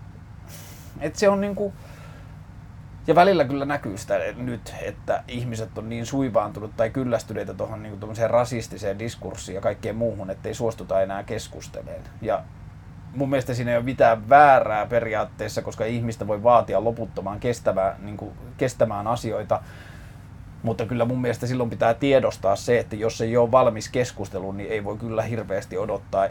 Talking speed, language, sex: 150 wpm, Finnish, male